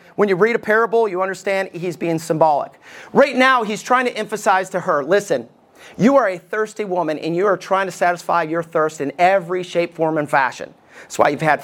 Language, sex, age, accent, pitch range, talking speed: English, male, 40-59, American, 170-225 Hz, 215 wpm